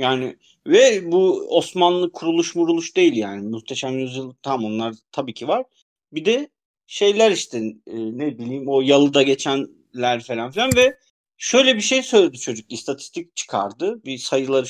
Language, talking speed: Turkish, 150 wpm